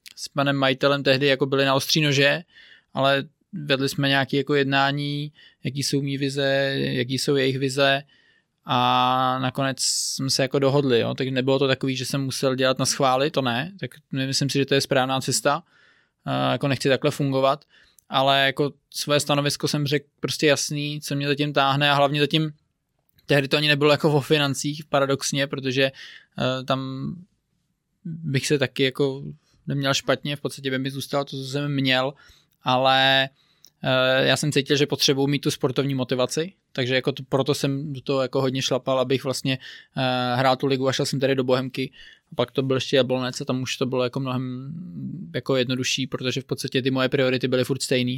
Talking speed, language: 190 wpm, Czech